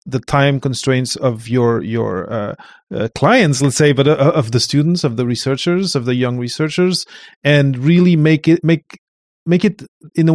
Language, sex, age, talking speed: English, male, 30-49, 185 wpm